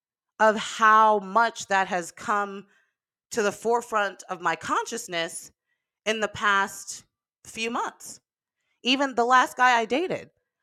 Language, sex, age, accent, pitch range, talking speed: English, female, 30-49, American, 175-225 Hz, 130 wpm